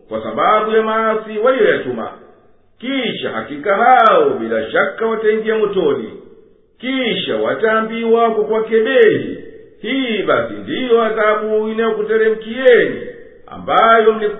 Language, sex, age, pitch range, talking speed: Swahili, male, 50-69, 220-245 Hz, 110 wpm